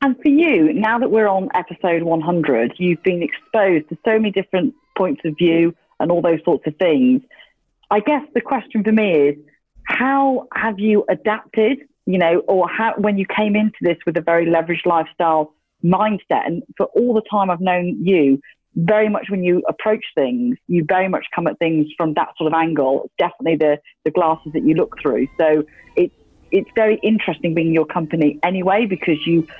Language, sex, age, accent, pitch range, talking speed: English, female, 40-59, British, 160-215 Hz, 190 wpm